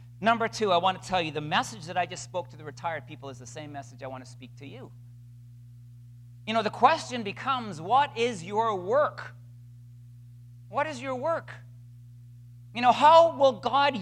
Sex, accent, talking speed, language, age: male, American, 195 wpm, English, 40-59